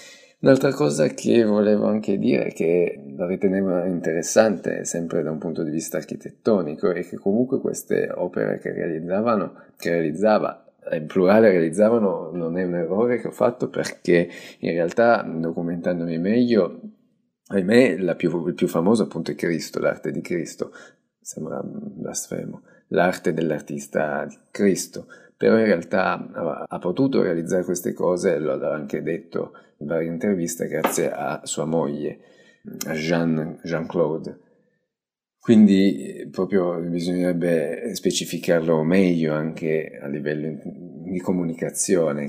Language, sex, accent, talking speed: Italian, male, native, 125 wpm